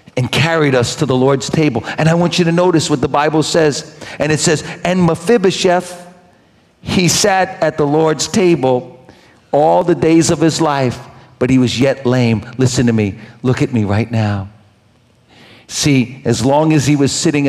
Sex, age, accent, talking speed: male, 60-79, American, 185 wpm